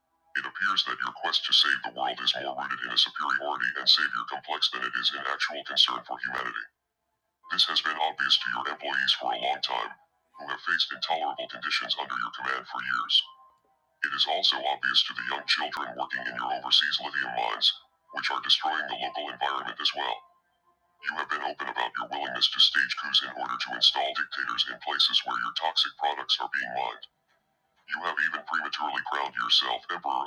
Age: 50-69